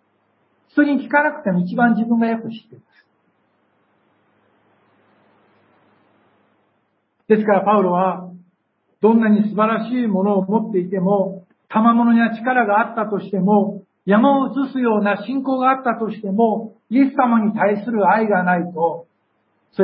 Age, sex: 60-79, male